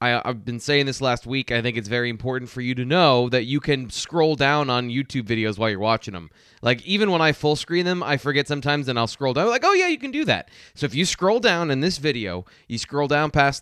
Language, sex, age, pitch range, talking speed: English, male, 20-39, 115-150 Hz, 265 wpm